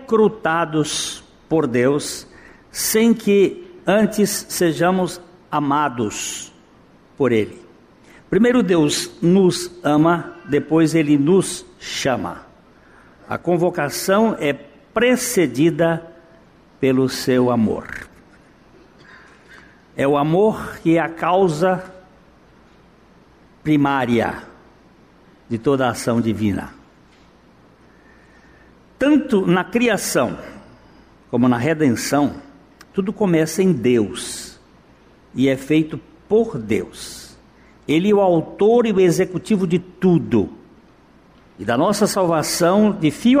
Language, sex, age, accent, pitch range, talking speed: Portuguese, male, 60-79, Brazilian, 150-200 Hz, 95 wpm